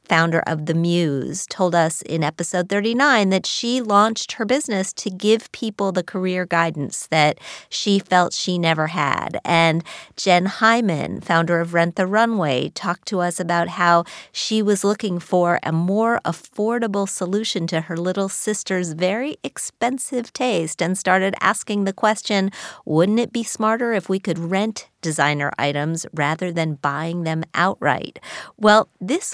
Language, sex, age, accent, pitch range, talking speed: English, female, 40-59, American, 165-210 Hz, 155 wpm